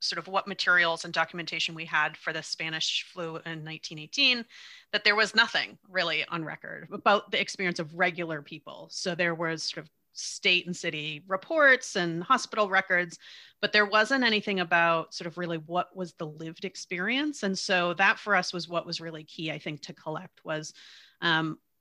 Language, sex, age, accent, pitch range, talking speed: English, female, 30-49, American, 160-195 Hz, 185 wpm